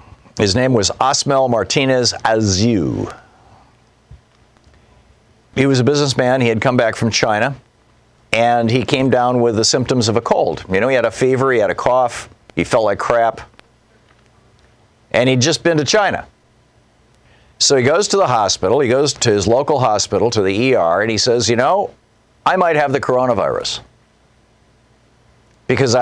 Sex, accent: male, American